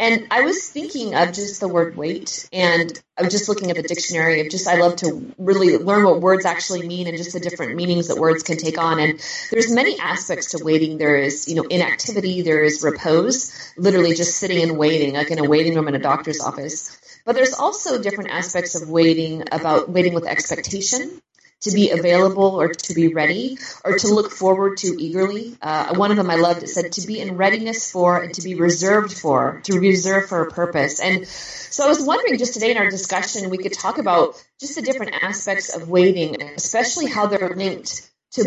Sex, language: female, English